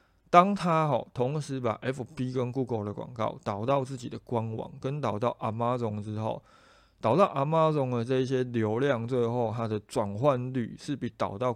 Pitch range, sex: 110-135 Hz, male